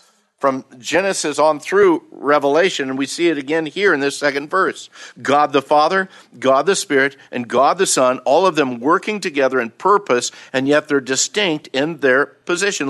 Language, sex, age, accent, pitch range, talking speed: English, male, 50-69, American, 140-175 Hz, 180 wpm